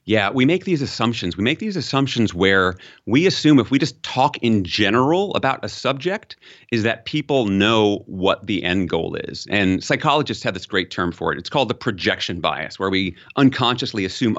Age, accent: 40-59, American